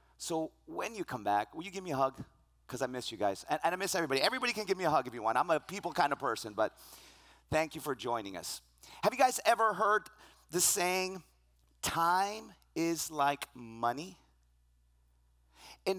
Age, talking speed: 40-59, 205 wpm